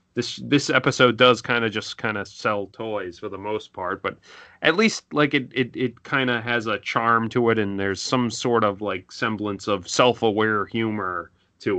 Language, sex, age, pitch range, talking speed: English, male, 30-49, 100-125 Hz, 205 wpm